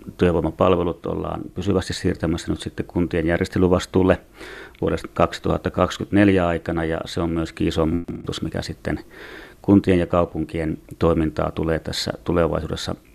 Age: 30-49